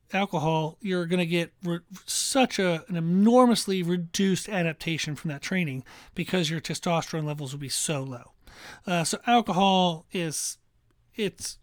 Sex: male